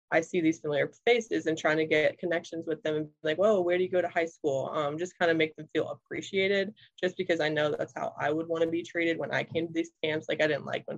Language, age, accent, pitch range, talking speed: English, 20-39, American, 150-175 Hz, 295 wpm